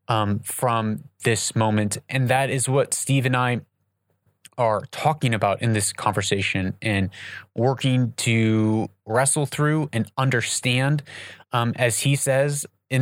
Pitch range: 105-140 Hz